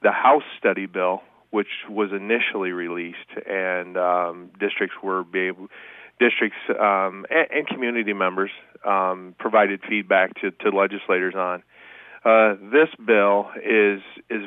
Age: 40-59